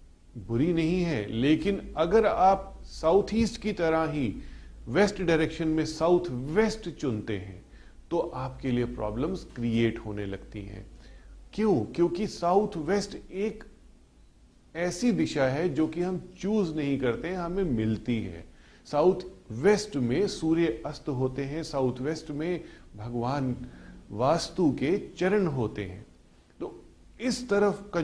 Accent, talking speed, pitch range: native, 135 wpm, 110-180 Hz